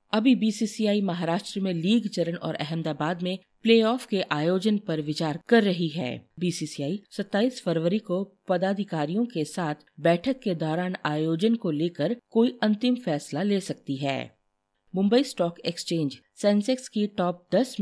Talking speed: 145 wpm